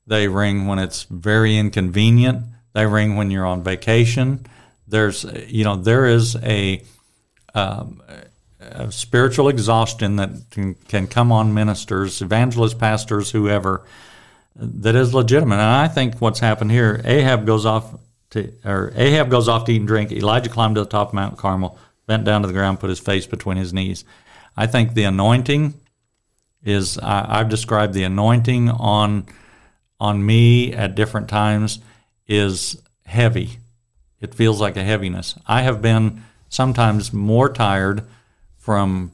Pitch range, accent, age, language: 100-120 Hz, American, 60-79, English